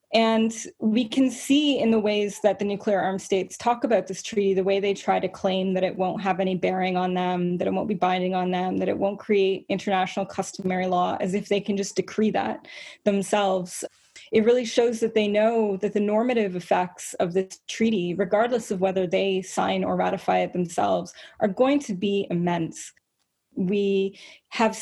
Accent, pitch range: American, 185-220 Hz